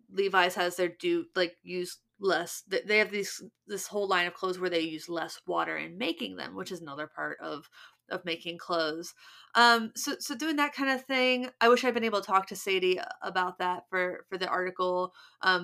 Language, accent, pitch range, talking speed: English, American, 170-240 Hz, 215 wpm